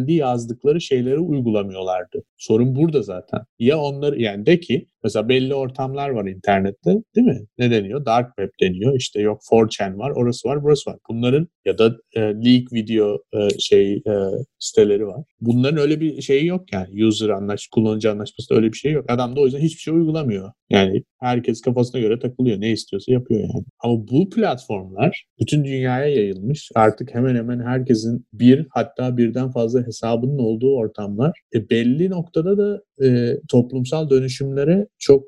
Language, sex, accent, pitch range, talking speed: Turkish, male, native, 110-140 Hz, 170 wpm